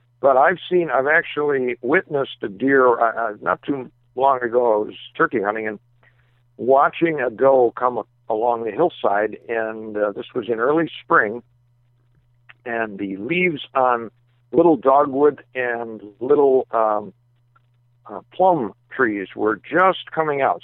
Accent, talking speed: American, 140 wpm